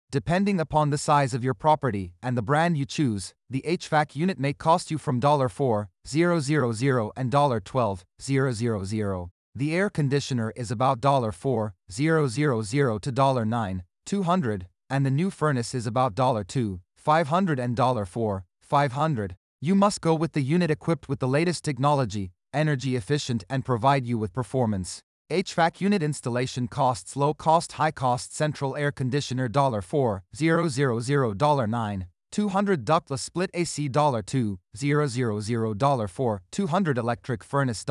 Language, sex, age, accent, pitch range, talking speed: English, male, 30-49, American, 115-155 Hz, 125 wpm